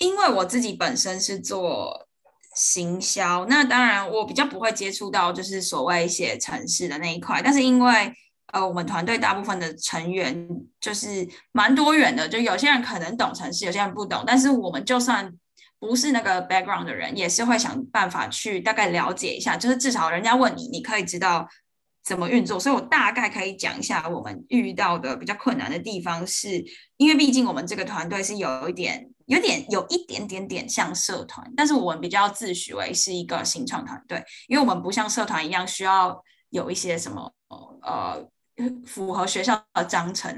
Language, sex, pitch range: Chinese, female, 180-250 Hz